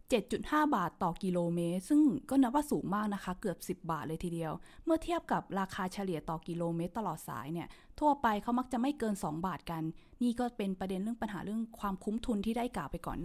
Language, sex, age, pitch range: Thai, female, 20-39, 180-240 Hz